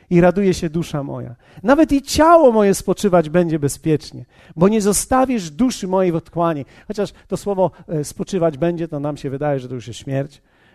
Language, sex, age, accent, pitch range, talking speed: Polish, male, 40-59, native, 160-235 Hz, 185 wpm